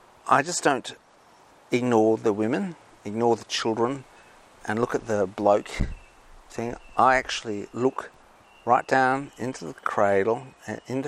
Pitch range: 100-125 Hz